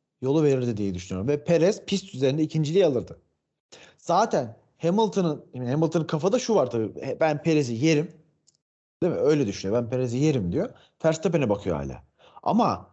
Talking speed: 150 wpm